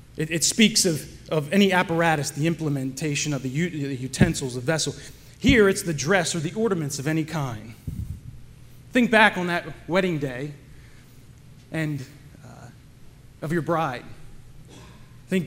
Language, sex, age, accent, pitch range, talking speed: English, male, 30-49, American, 125-160 Hz, 145 wpm